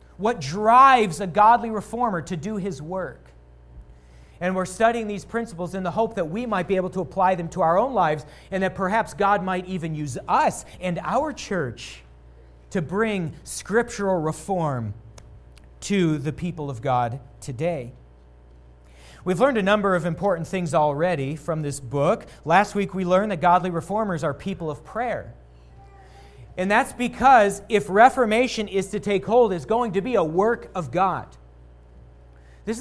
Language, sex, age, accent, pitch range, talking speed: English, male, 40-59, American, 125-205 Hz, 165 wpm